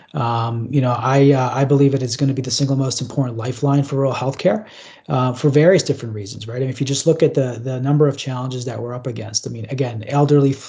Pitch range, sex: 125-145 Hz, male